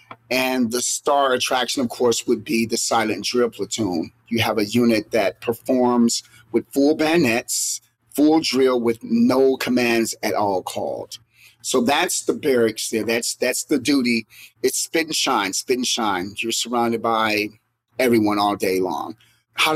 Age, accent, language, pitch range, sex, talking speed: 30-49, American, English, 115-135 Hz, male, 160 wpm